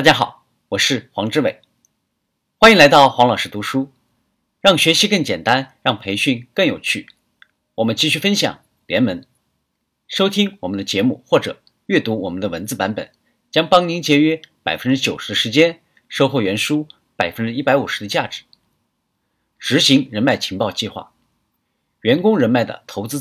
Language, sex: Chinese, male